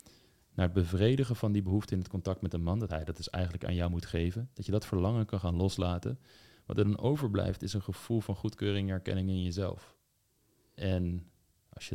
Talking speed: 220 wpm